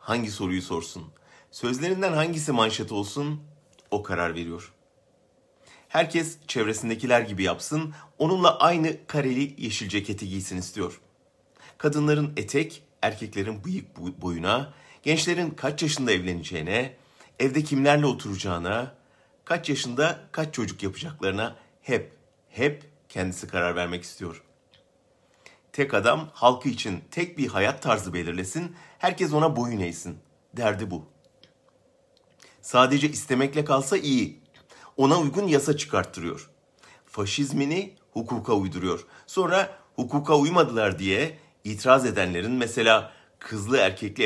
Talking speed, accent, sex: 105 wpm, Turkish, male